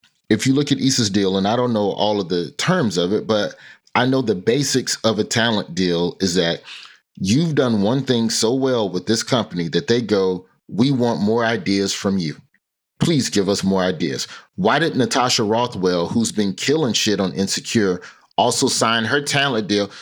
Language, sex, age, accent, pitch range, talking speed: English, male, 30-49, American, 100-130 Hz, 195 wpm